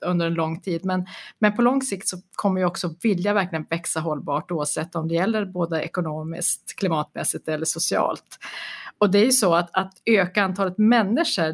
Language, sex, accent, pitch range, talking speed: Swedish, female, native, 170-215 Hz, 185 wpm